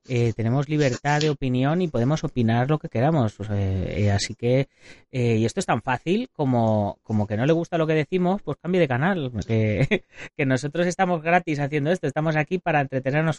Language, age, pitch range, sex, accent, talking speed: Spanish, 30-49, 115-155 Hz, female, Spanish, 205 wpm